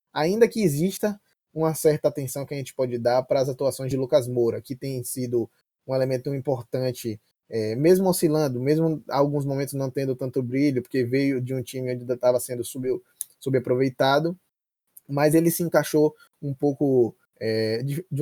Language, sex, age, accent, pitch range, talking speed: Portuguese, male, 20-39, Brazilian, 120-150 Hz, 165 wpm